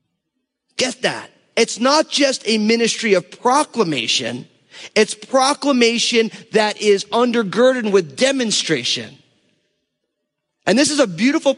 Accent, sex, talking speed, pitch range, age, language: American, male, 110 wpm, 180-230 Hz, 30-49, English